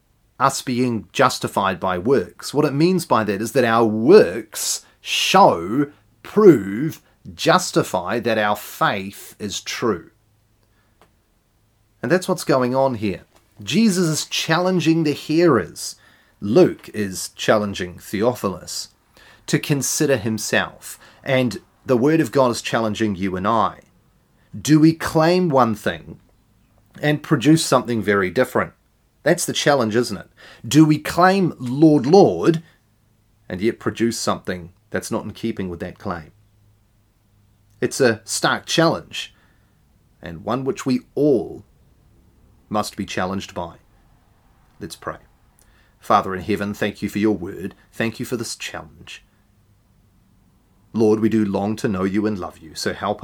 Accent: Australian